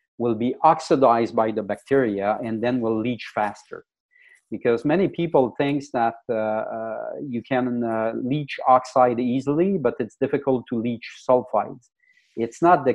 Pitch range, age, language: 115-145 Hz, 40-59, English